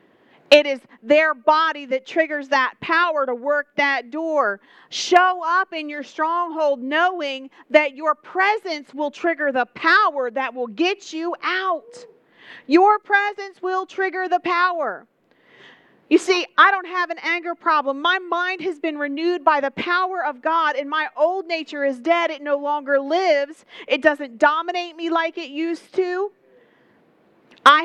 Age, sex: 40-59, female